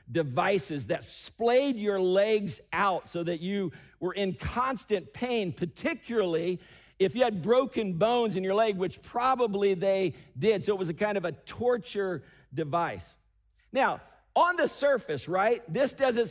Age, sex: 50-69, male